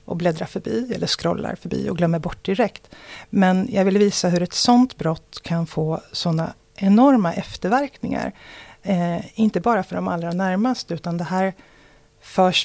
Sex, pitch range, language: female, 170-215 Hz, Swedish